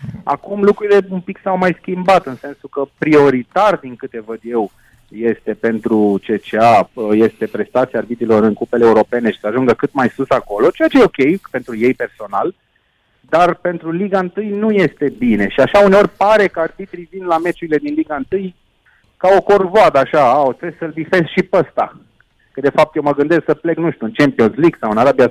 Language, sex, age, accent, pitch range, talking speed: Romanian, male, 30-49, native, 135-185 Hz, 200 wpm